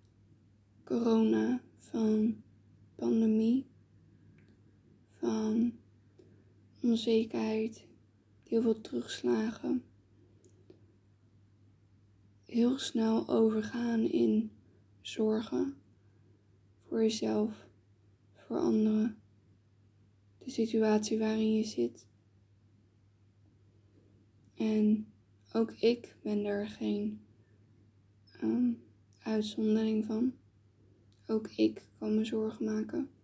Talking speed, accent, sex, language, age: 65 wpm, Dutch, female, Dutch, 20-39